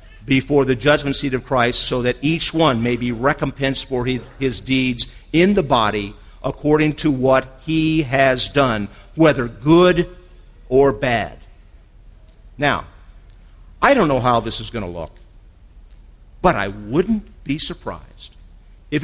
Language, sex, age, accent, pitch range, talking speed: English, male, 50-69, American, 95-150 Hz, 140 wpm